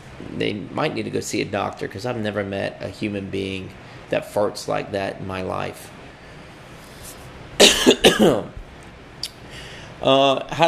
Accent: American